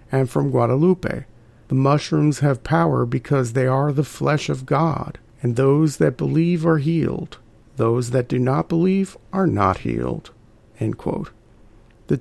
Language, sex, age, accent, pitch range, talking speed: English, male, 40-59, American, 120-145 Hz, 145 wpm